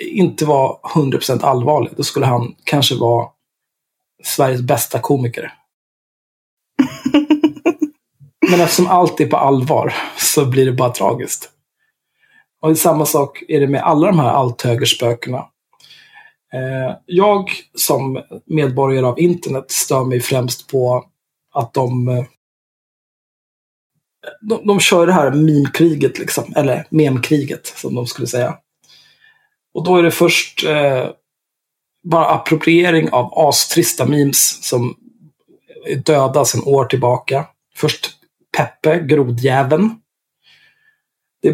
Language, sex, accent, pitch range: Swedish, male, native, 130-175 Hz